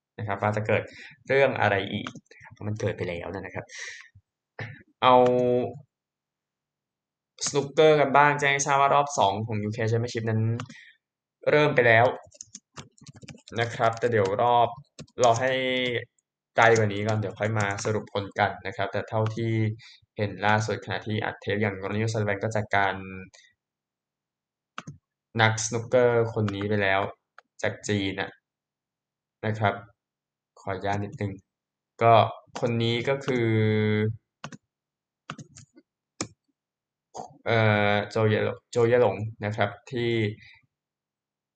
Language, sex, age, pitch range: Thai, male, 20-39, 100-115 Hz